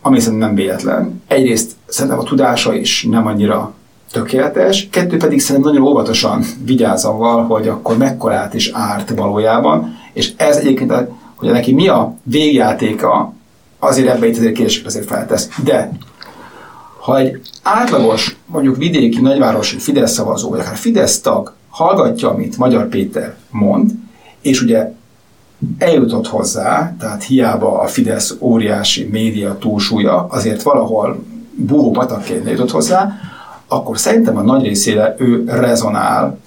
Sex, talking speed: male, 130 wpm